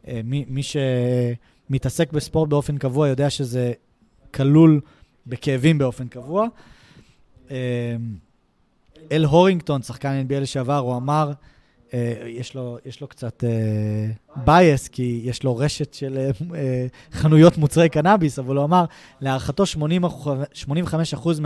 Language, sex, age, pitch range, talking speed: Hebrew, male, 20-39, 130-155 Hz, 105 wpm